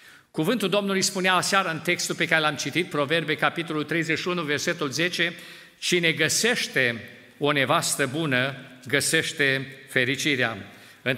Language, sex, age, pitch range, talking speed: Romanian, male, 50-69, 140-195 Hz, 125 wpm